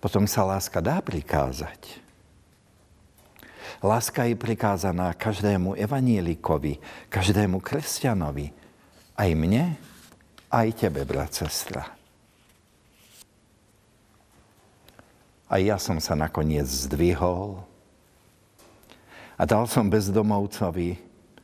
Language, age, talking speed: Slovak, 60-79, 80 wpm